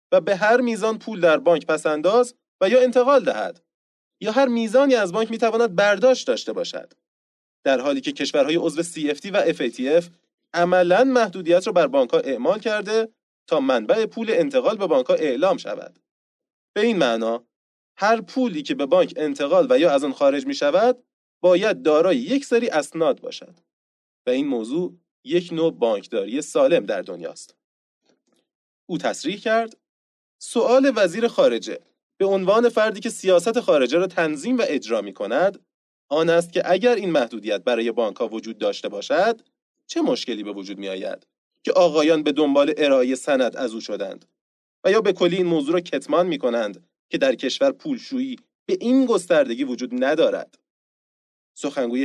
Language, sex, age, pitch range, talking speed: Persian, male, 30-49, 170-260 Hz, 165 wpm